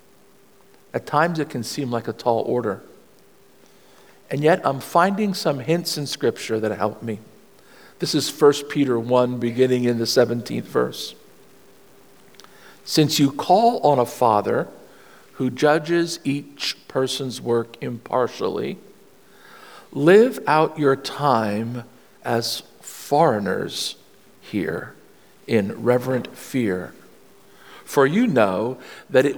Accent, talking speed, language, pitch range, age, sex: American, 115 wpm, English, 115-150 Hz, 50-69, male